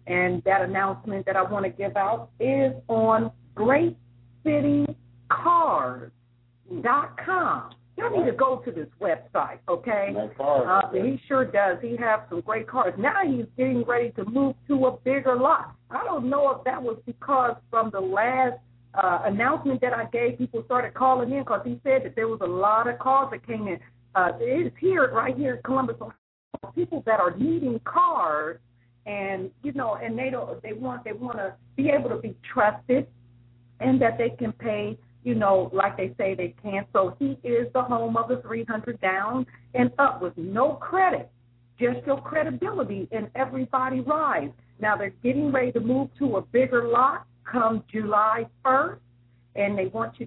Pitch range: 190-260 Hz